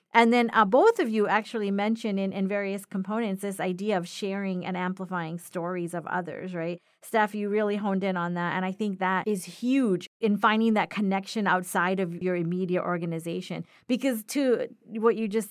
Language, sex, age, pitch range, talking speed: English, female, 40-59, 185-225 Hz, 190 wpm